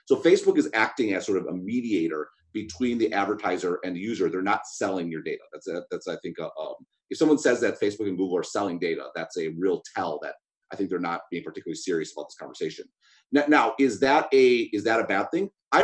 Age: 30-49